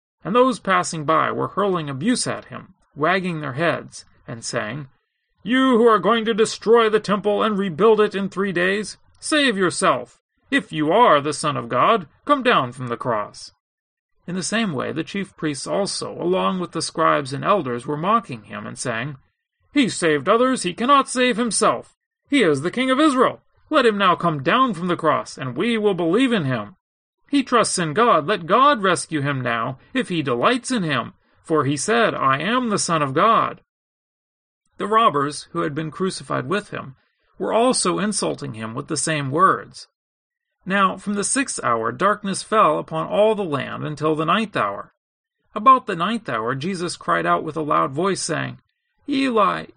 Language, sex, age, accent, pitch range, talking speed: English, male, 40-59, American, 155-230 Hz, 185 wpm